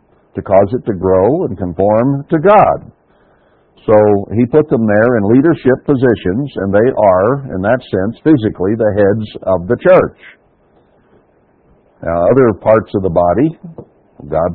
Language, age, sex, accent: English, 60-79, male, American